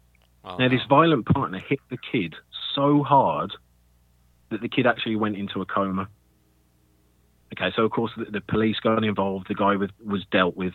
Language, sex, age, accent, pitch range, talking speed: English, male, 30-49, British, 85-125 Hz, 180 wpm